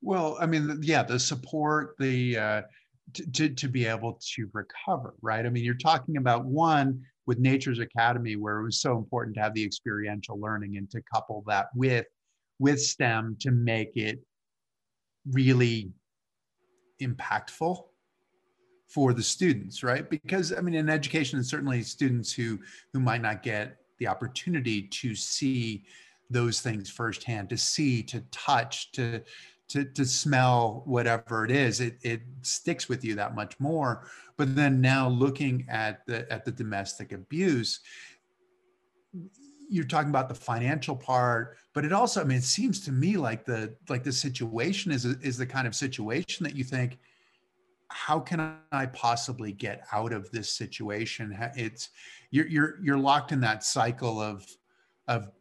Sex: male